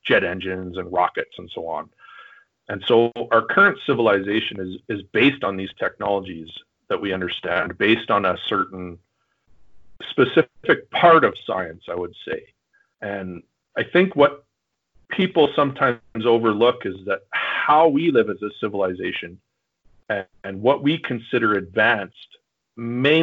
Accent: American